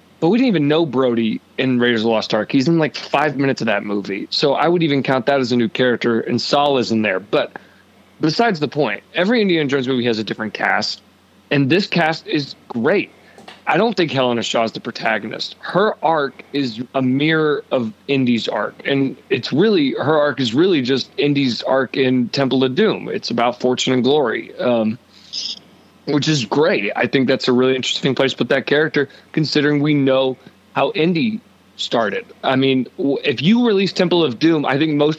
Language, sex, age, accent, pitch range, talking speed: English, male, 30-49, American, 125-155 Hz, 200 wpm